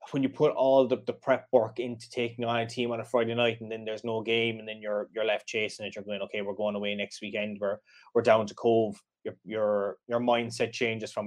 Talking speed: 255 wpm